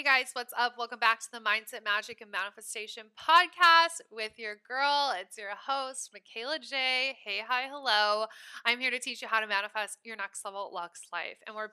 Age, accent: 20-39, American